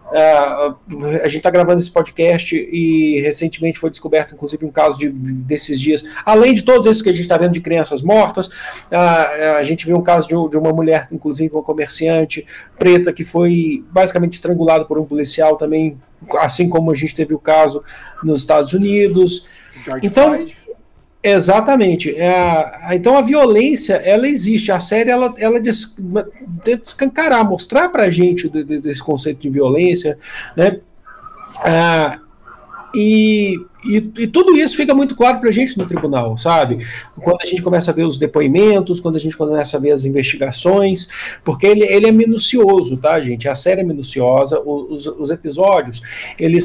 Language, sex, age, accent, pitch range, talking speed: Portuguese, male, 50-69, Brazilian, 155-190 Hz, 160 wpm